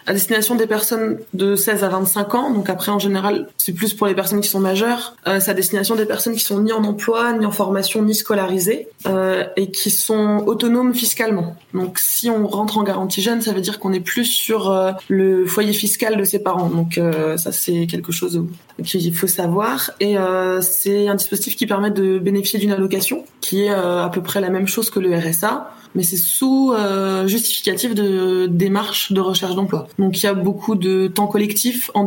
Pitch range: 185-210 Hz